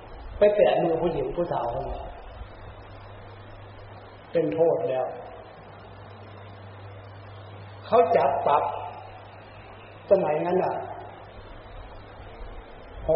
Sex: male